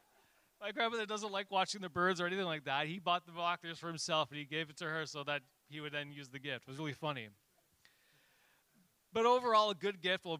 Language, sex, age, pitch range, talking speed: English, male, 30-49, 130-165 Hz, 235 wpm